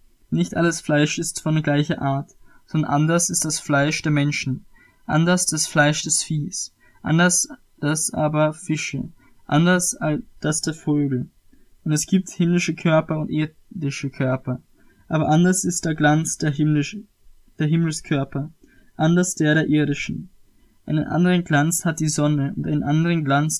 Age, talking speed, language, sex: 20-39, 150 wpm, German, male